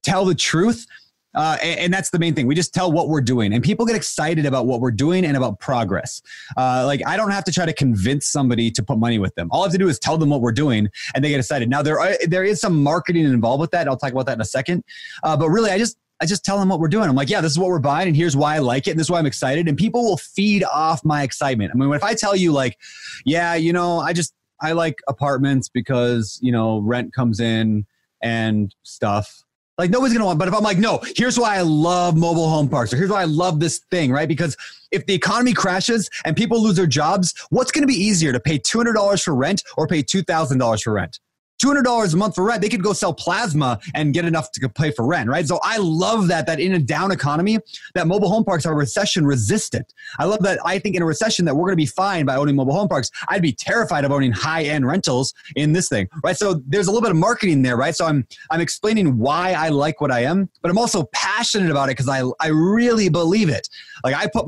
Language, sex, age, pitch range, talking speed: English, male, 30-49, 140-195 Hz, 265 wpm